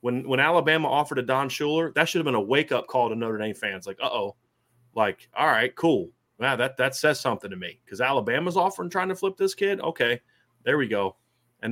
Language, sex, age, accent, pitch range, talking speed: English, male, 30-49, American, 115-155 Hz, 225 wpm